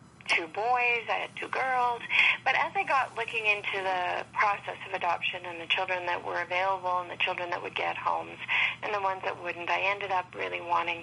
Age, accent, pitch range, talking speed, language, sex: 40-59, American, 175-210 Hz, 210 wpm, English, female